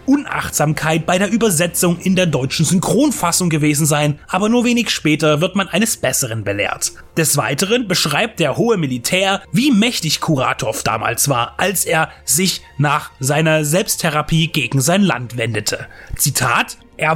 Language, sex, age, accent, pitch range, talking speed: German, male, 30-49, German, 150-200 Hz, 145 wpm